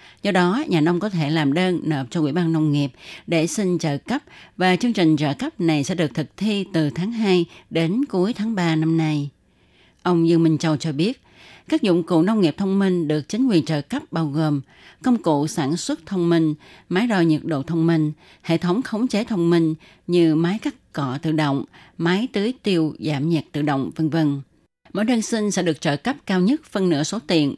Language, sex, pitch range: Vietnamese, female, 155-190 Hz